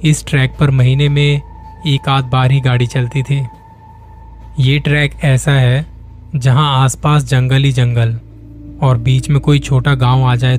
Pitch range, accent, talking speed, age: 125-145 Hz, native, 165 wpm, 20-39